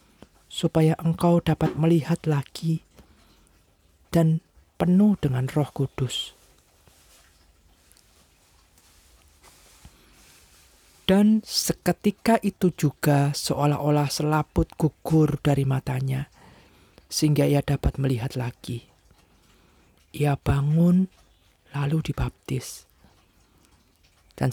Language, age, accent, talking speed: Indonesian, 40-59, native, 70 wpm